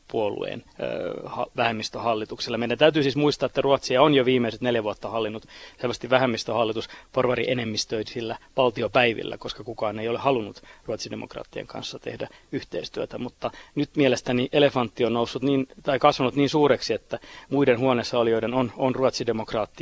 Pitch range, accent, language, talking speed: 115-140 Hz, native, Finnish, 140 wpm